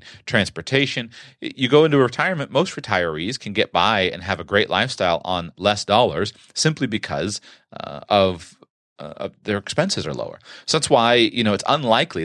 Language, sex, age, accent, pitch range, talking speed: English, male, 30-49, American, 90-115 Hz, 170 wpm